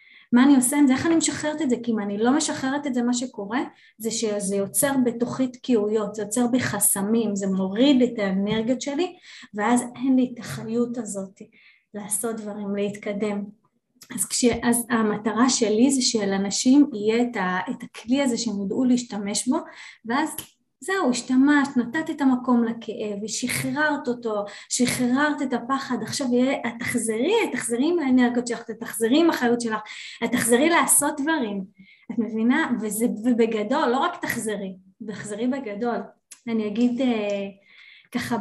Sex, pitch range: female, 210-255 Hz